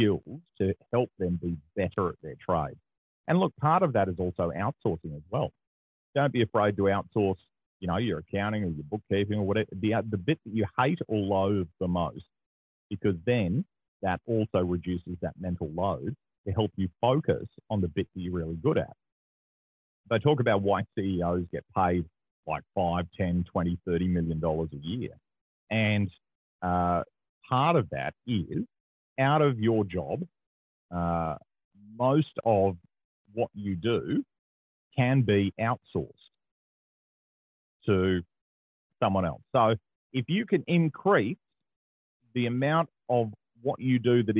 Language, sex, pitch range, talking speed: English, male, 90-115 Hz, 150 wpm